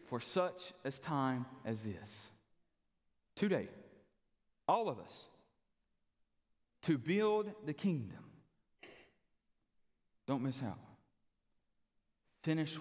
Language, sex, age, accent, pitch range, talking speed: English, male, 40-59, American, 115-165 Hz, 85 wpm